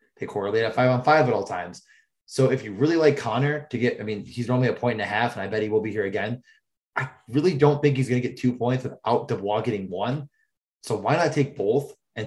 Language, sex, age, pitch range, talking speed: English, male, 20-39, 115-135 Hz, 265 wpm